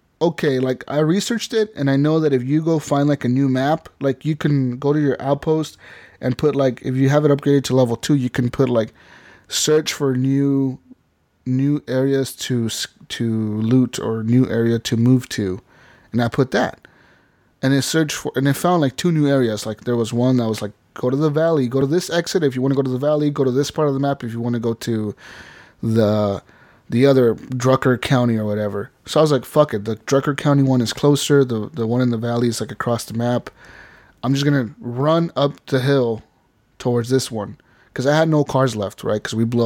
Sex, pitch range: male, 120-145 Hz